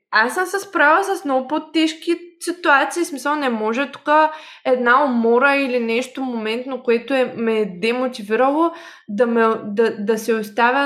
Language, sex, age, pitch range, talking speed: Bulgarian, female, 20-39, 220-265 Hz, 160 wpm